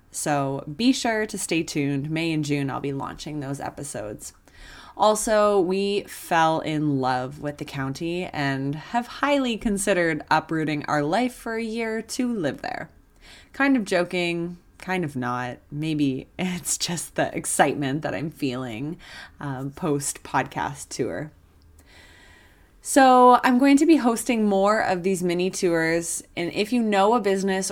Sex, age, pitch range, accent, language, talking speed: female, 20-39, 150-215 Hz, American, English, 150 wpm